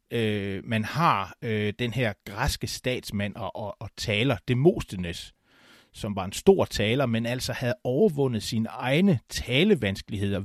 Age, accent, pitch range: 30-49, native, 105-135 Hz